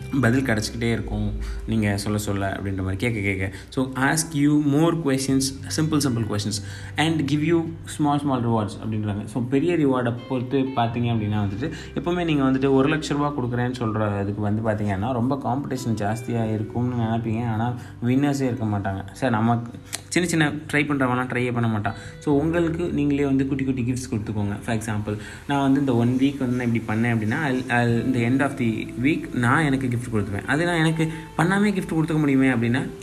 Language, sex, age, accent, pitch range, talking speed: Tamil, male, 20-39, native, 110-140 Hz, 175 wpm